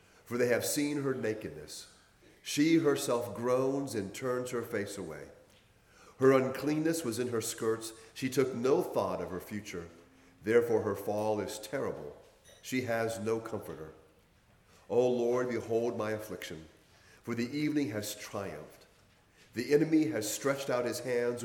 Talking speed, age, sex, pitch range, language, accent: 150 wpm, 40-59, male, 100-130 Hz, English, American